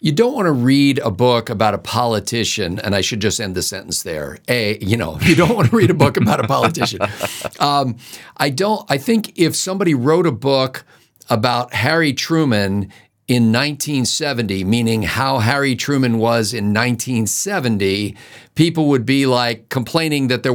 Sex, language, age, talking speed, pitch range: male, English, 50-69, 175 wpm, 110-140 Hz